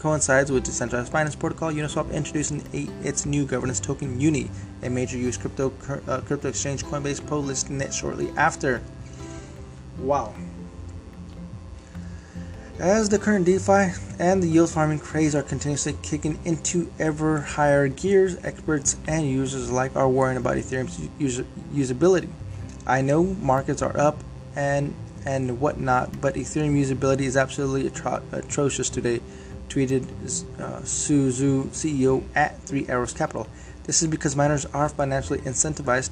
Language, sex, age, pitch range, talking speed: English, male, 20-39, 115-150 Hz, 135 wpm